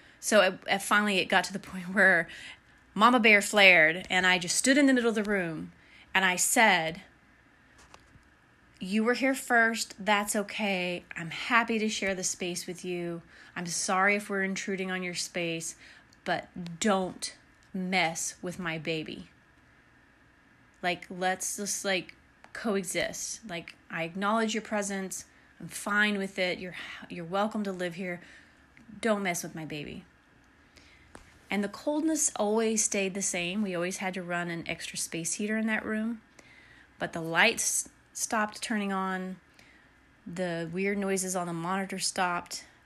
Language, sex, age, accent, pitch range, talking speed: English, female, 30-49, American, 170-205 Hz, 155 wpm